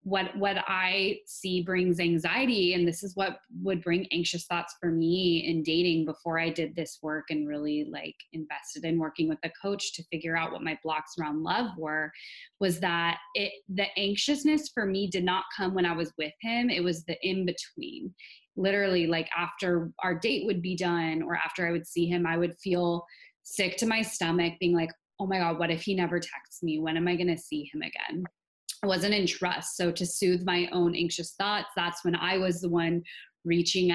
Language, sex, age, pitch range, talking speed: English, female, 20-39, 170-195 Hz, 210 wpm